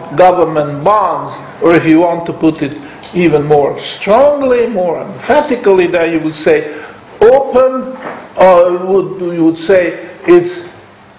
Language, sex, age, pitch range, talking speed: English, male, 60-79, 170-255 Hz, 135 wpm